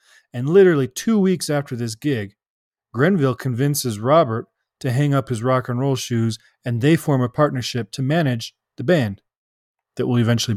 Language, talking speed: English, 170 wpm